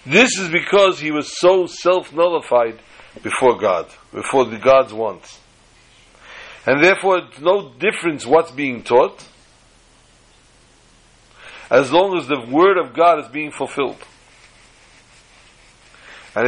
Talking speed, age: 115 wpm, 60-79